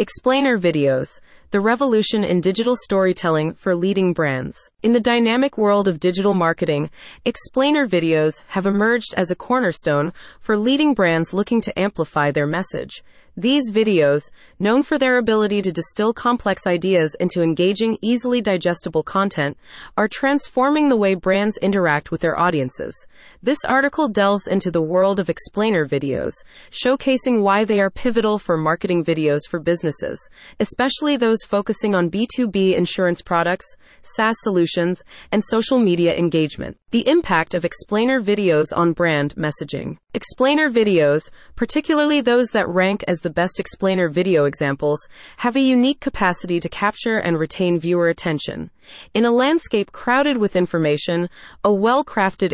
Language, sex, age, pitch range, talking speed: English, female, 30-49, 170-230 Hz, 145 wpm